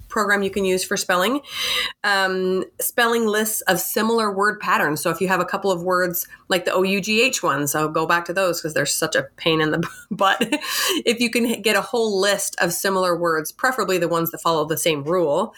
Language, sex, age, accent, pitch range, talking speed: English, female, 30-49, American, 170-215 Hz, 225 wpm